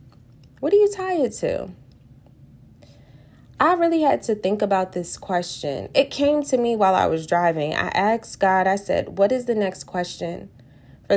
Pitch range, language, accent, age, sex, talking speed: 160-215 Hz, English, American, 20-39, female, 170 wpm